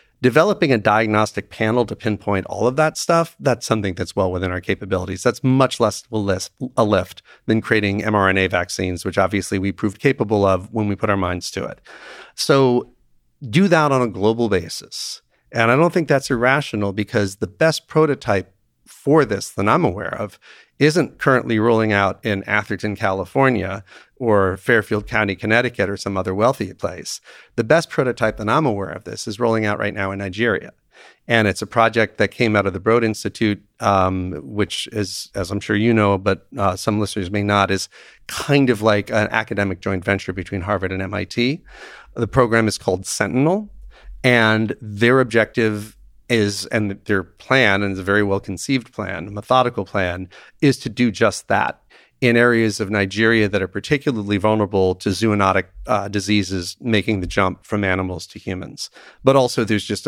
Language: English